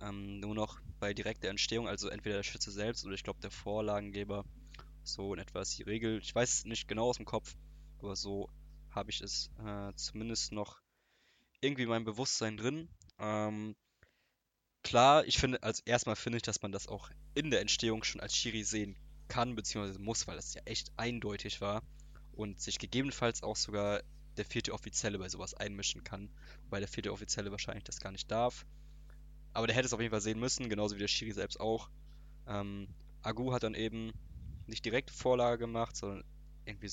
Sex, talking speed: male, 185 wpm